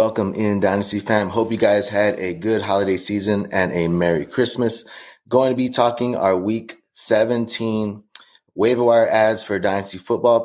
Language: English